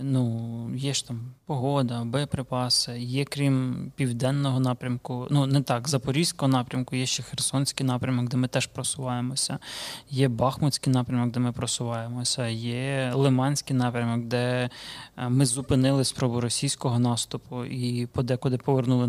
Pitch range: 120-135 Hz